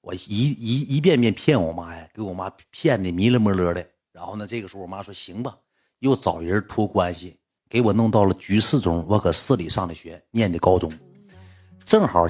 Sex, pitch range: male, 90-120 Hz